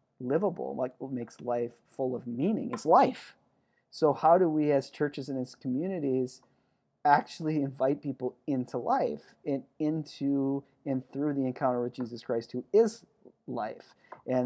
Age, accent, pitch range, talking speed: 40-59, American, 130-150 Hz, 155 wpm